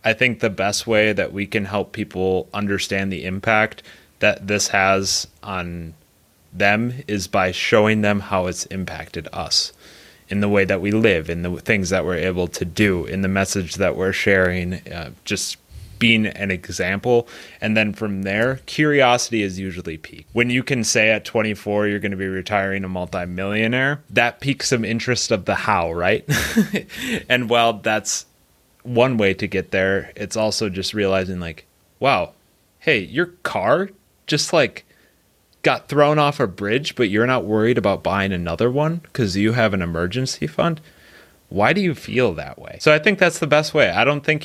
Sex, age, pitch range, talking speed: male, 30-49, 95-120 Hz, 180 wpm